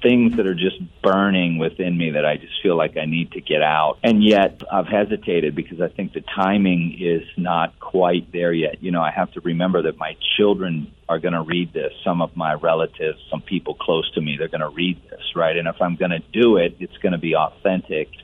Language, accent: English, American